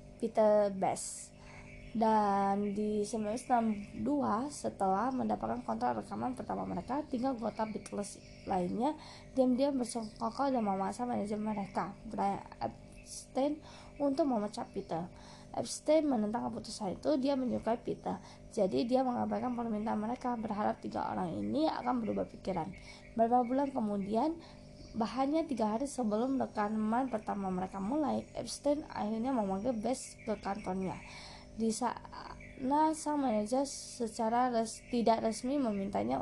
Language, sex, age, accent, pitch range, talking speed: Indonesian, female, 20-39, native, 205-260 Hz, 115 wpm